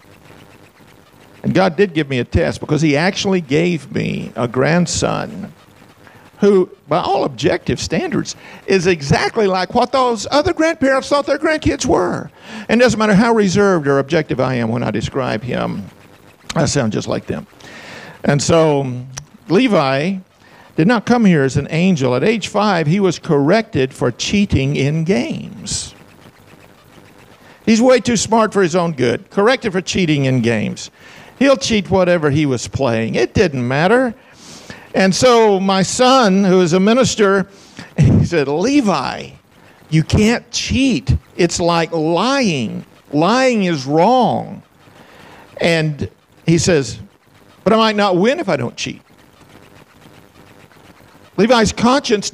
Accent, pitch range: American, 155-225 Hz